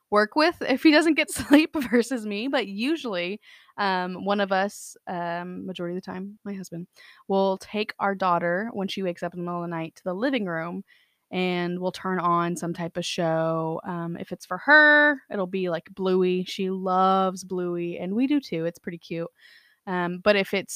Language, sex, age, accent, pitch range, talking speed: English, female, 20-39, American, 175-225 Hz, 205 wpm